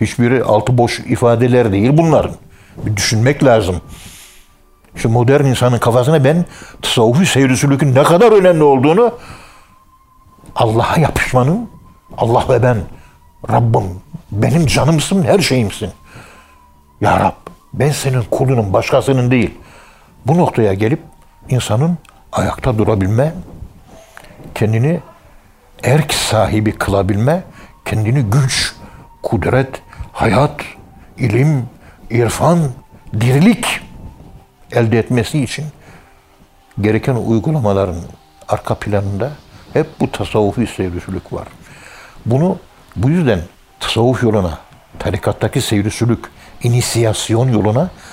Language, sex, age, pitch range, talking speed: Turkish, male, 60-79, 105-135 Hz, 95 wpm